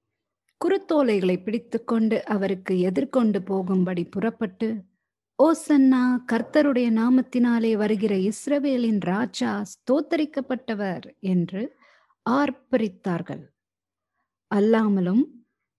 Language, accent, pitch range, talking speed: Tamil, native, 195-265 Hz, 60 wpm